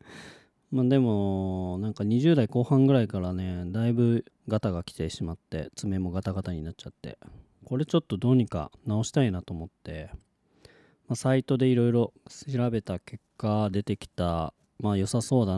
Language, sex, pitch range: Japanese, male, 90-130 Hz